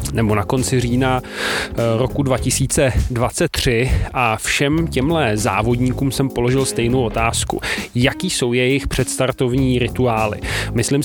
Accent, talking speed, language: native, 110 wpm, Czech